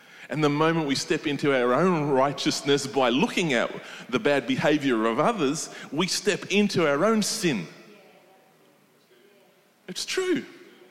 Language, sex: English, male